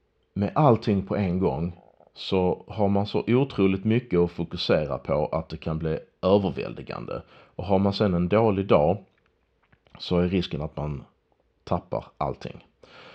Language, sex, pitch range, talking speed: Swedish, male, 80-100 Hz, 150 wpm